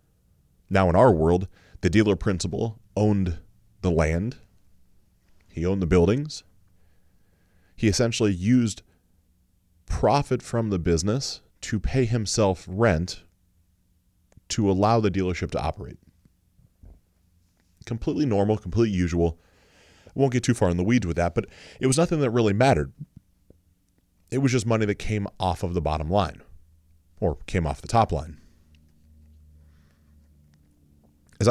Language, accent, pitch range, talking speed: English, American, 85-110 Hz, 130 wpm